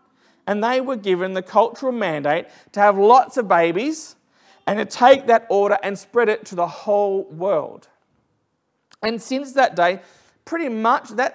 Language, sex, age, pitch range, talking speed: English, male, 40-59, 190-245 Hz, 165 wpm